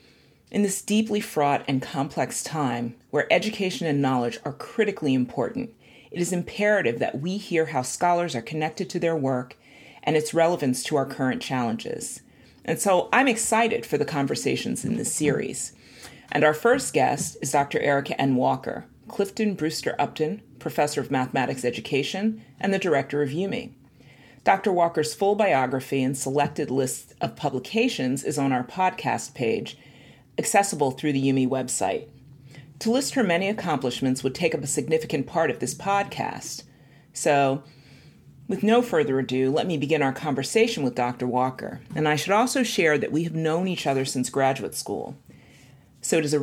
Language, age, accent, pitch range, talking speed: English, 40-59, American, 135-180 Hz, 165 wpm